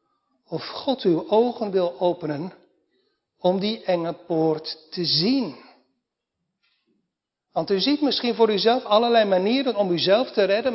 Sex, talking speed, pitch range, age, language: male, 135 wpm, 190-245 Hz, 60-79, Dutch